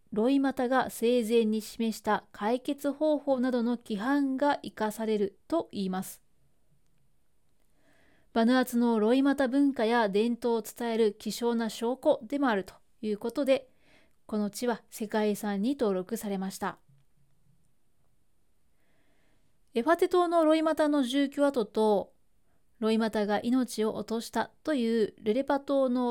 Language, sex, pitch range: Japanese, female, 210-260 Hz